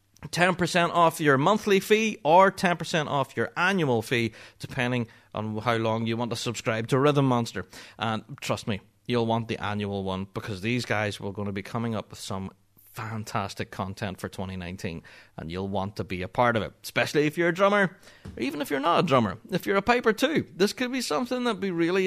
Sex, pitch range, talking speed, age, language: male, 115-185 Hz, 215 wpm, 30-49, English